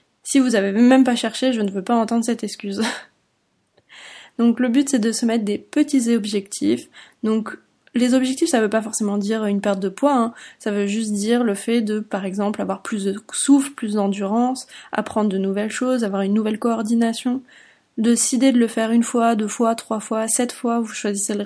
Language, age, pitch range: French, 20-39, 215-250 Hz